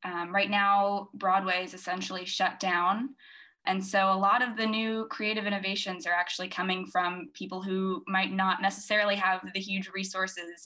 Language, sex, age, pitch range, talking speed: English, female, 10-29, 185-210 Hz, 170 wpm